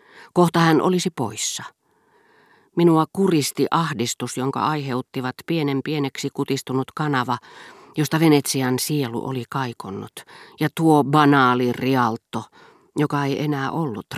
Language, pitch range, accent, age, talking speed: Finnish, 125-165 Hz, native, 40-59, 110 wpm